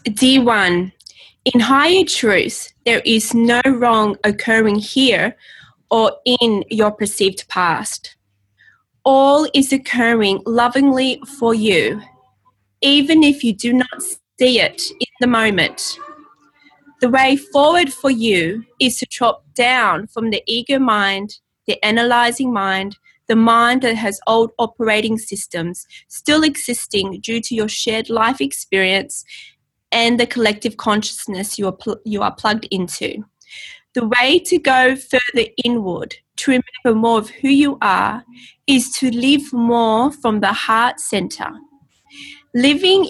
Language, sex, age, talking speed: English, female, 20-39, 130 wpm